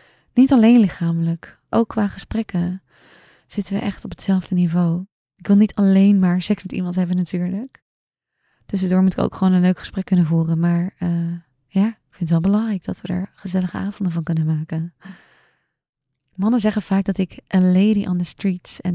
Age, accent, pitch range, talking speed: 20-39, Dutch, 170-210 Hz, 185 wpm